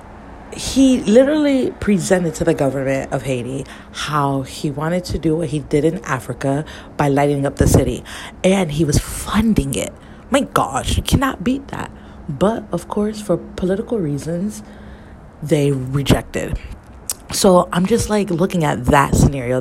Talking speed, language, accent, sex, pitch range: 155 wpm, English, American, female, 130-185 Hz